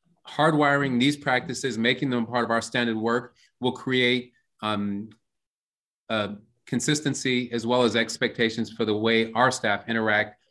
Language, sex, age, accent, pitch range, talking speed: English, male, 30-49, American, 110-130 Hz, 145 wpm